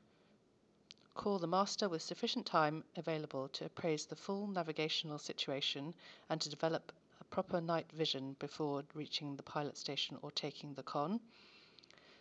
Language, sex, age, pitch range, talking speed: English, female, 40-59, 155-195 Hz, 145 wpm